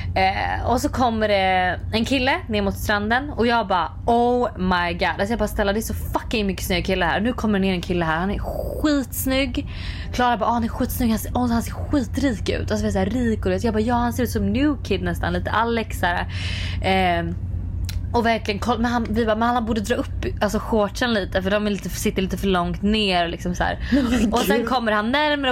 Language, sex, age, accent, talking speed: Swedish, female, 20-39, native, 240 wpm